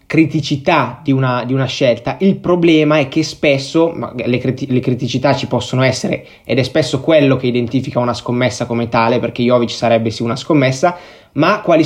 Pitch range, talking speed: 125-155 Hz, 170 wpm